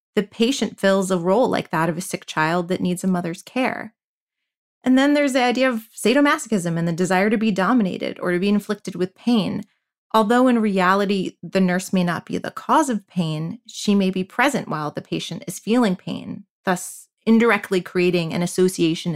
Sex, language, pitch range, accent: female, English, 180-225 Hz, American